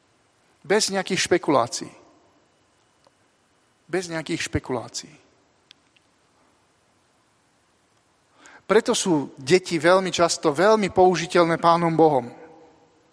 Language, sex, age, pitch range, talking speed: Slovak, male, 40-59, 160-190 Hz, 70 wpm